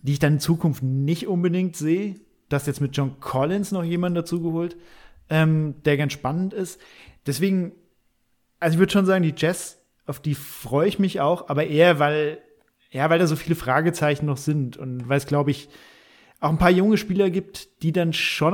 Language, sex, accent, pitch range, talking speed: German, male, German, 135-170 Hz, 195 wpm